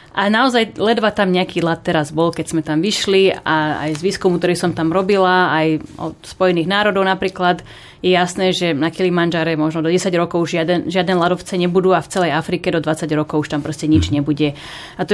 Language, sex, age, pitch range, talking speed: Slovak, female, 30-49, 165-195 Hz, 210 wpm